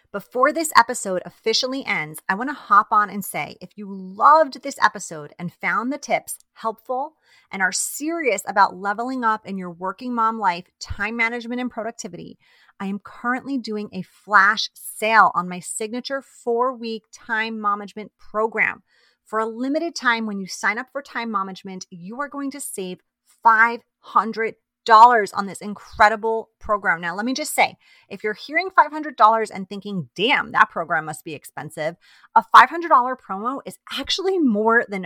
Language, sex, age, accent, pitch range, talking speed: English, female, 30-49, American, 195-255 Hz, 165 wpm